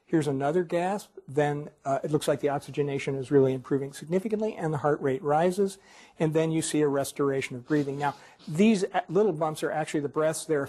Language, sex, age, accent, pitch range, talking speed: English, male, 50-69, American, 135-160 Hz, 210 wpm